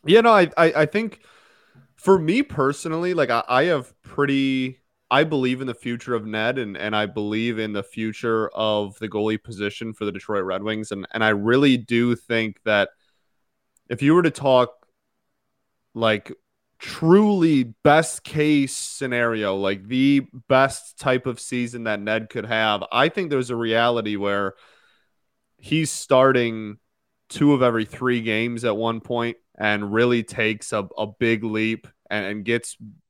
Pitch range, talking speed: 105-135 Hz, 165 wpm